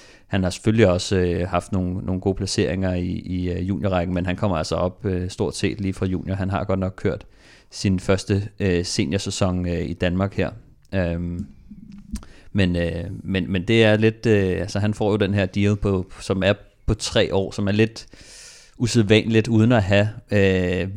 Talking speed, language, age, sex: 195 wpm, Danish, 30-49, male